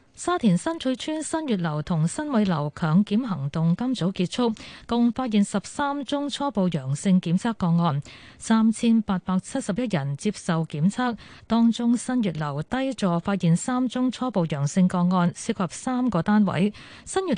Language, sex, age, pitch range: Chinese, female, 20-39, 170-235 Hz